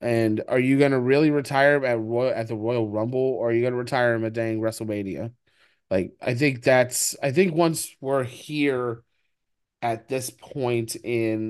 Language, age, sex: English, 20-39, male